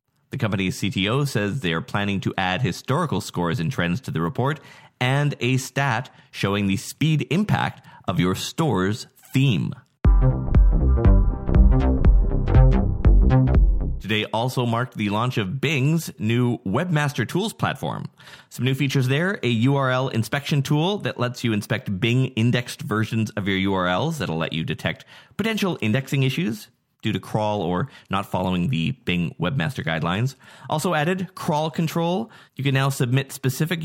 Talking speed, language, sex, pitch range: 145 wpm, English, male, 105-150 Hz